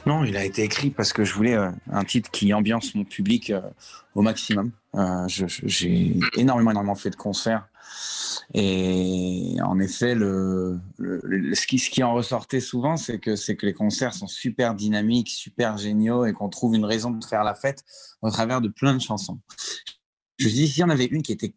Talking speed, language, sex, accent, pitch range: 210 wpm, French, male, French, 105-125 Hz